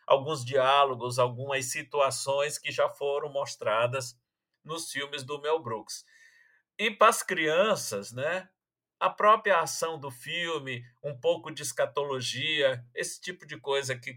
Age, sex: 50-69, male